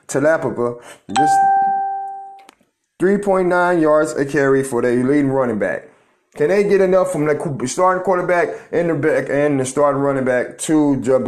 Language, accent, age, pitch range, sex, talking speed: English, American, 30-49, 125-150 Hz, male, 165 wpm